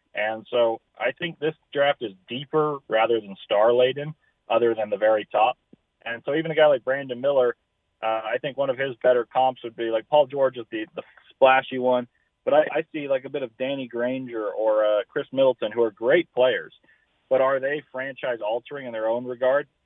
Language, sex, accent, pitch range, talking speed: English, male, American, 115-140 Hz, 210 wpm